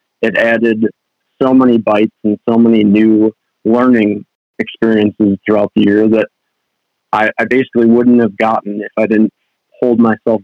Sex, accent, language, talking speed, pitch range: male, American, English, 150 wpm, 110-125 Hz